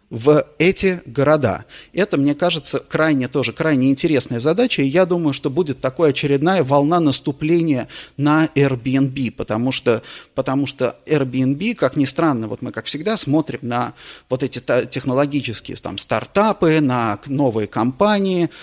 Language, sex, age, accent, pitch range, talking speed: Russian, male, 30-49, native, 130-160 Hz, 135 wpm